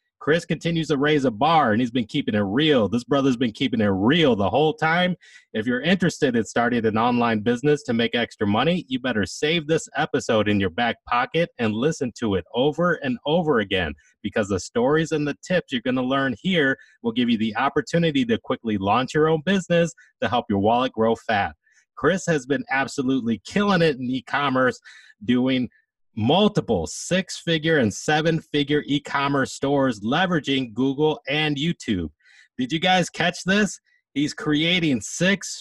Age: 30-49